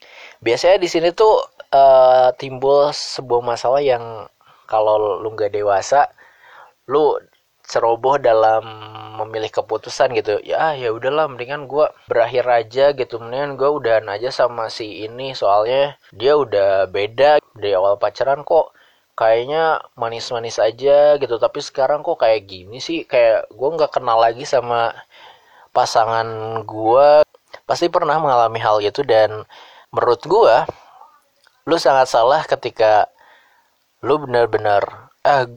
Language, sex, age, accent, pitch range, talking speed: Indonesian, male, 20-39, native, 110-150 Hz, 125 wpm